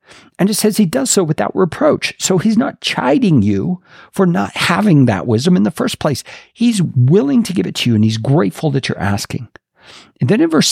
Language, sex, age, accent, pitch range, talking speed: English, male, 50-69, American, 125-185 Hz, 220 wpm